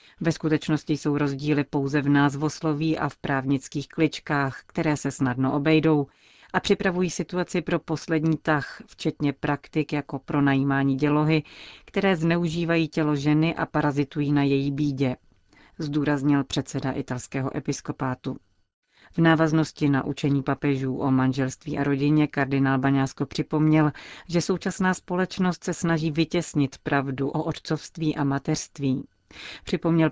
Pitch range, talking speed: 140-160 Hz, 130 wpm